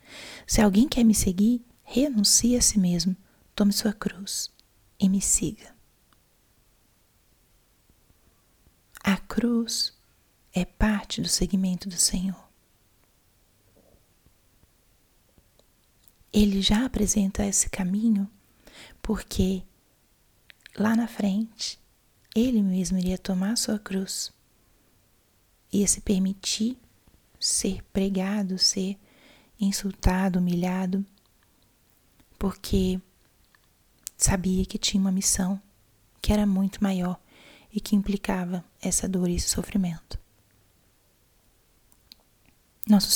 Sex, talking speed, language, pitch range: female, 90 wpm, Portuguese, 175-210 Hz